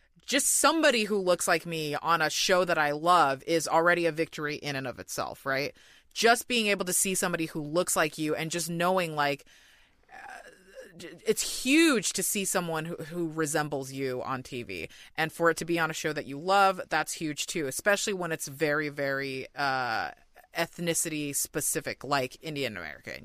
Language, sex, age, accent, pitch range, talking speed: English, female, 30-49, American, 160-205 Hz, 185 wpm